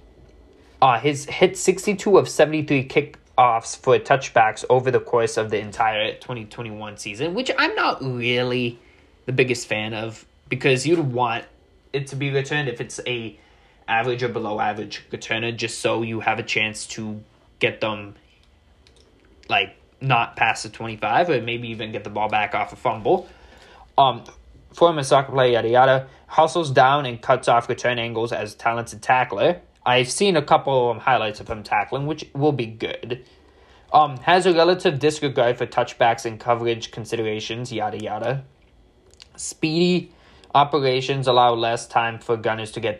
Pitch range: 110-140 Hz